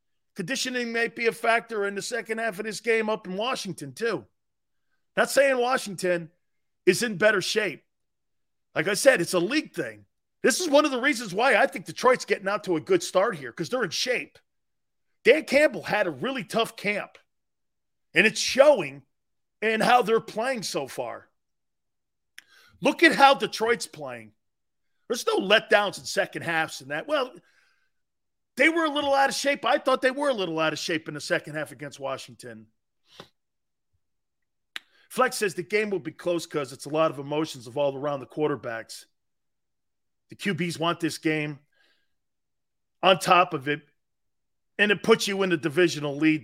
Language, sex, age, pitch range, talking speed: English, male, 40-59, 160-240 Hz, 180 wpm